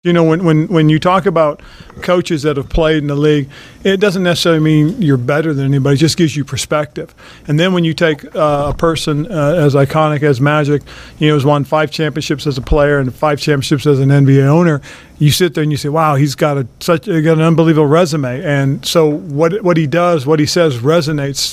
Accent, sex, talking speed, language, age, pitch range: American, male, 230 wpm, English, 40-59, 140-155 Hz